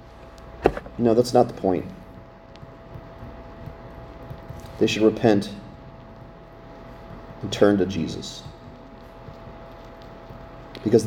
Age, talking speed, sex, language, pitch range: 30-49, 70 wpm, male, English, 110-140 Hz